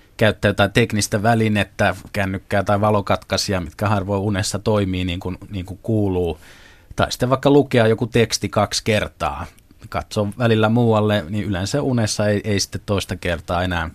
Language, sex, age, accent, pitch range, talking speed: Finnish, male, 30-49, native, 95-120 Hz, 155 wpm